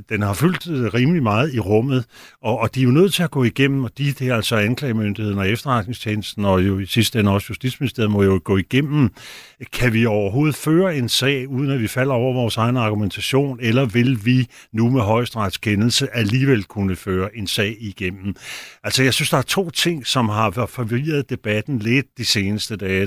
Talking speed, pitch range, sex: 200 wpm, 105-130 Hz, male